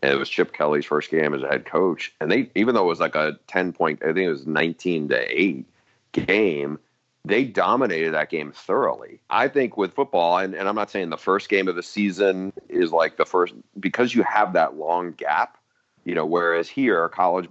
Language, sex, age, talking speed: English, male, 40-59, 220 wpm